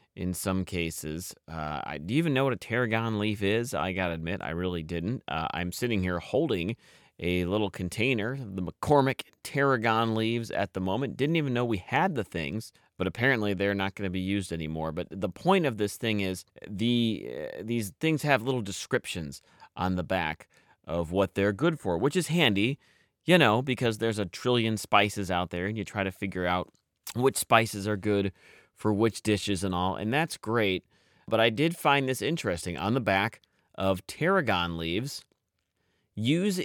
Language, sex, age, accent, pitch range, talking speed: English, male, 30-49, American, 95-130 Hz, 190 wpm